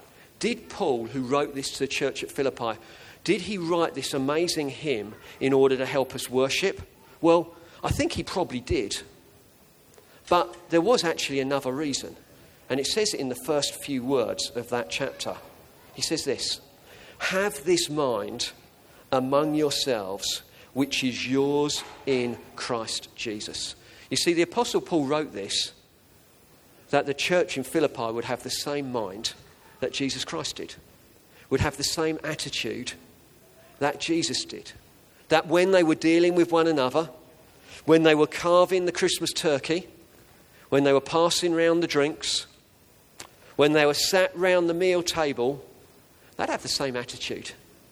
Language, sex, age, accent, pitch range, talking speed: English, male, 40-59, British, 125-165 Hz, 155 wpm